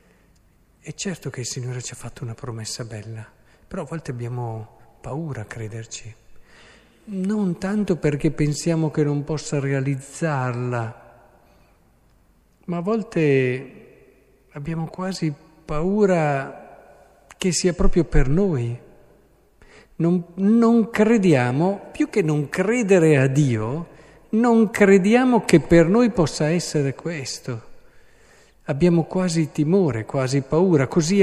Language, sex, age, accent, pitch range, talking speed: Italian, male, 50-69, native, 125-170 Hz, 115 wpm